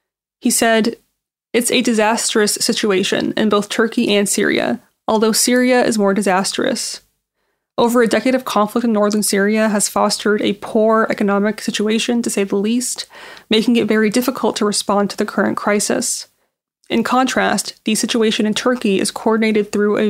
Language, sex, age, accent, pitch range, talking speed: English, female, 20-39, American, 205-230 Hz, 160 wpm